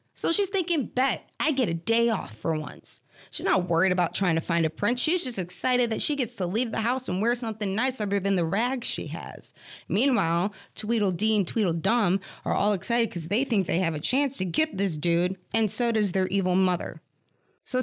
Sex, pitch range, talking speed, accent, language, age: female, 180-255 Hz, 220 wpm, American, English, 20-39